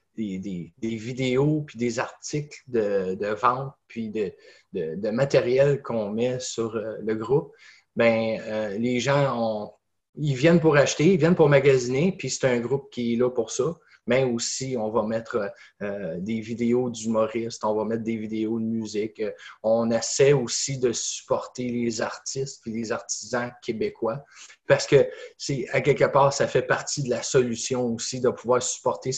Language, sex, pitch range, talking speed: English, male, 115-160 Hz, 175 wpm